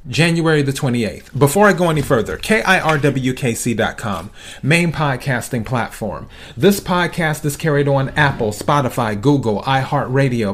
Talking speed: 120 wpm